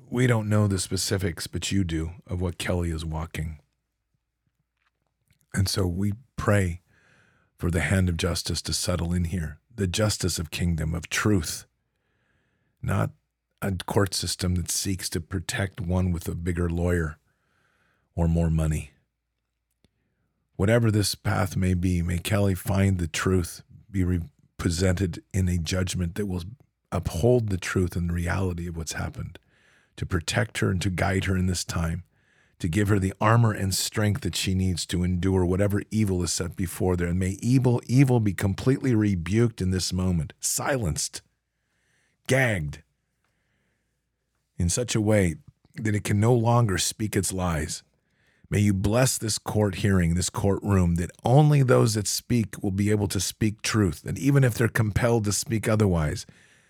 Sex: male